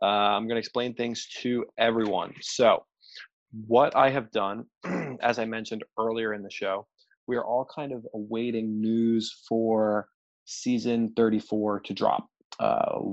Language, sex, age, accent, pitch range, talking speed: English, male, 20-39, American, 105-115 Hz, 150 wpm